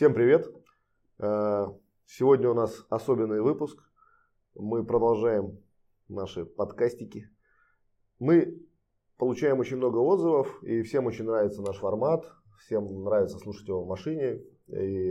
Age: 20-39